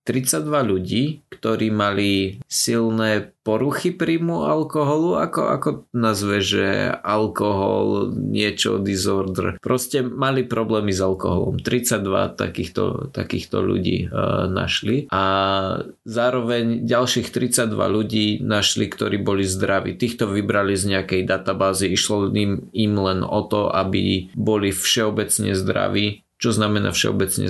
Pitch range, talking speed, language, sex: 100-120 Hz, 115 wpm, Slovak, male